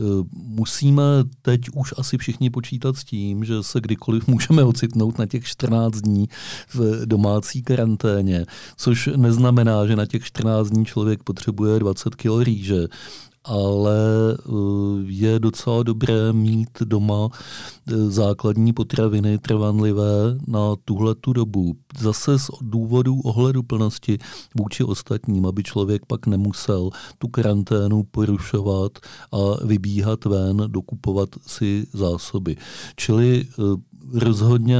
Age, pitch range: 40-59, 105-120 Hz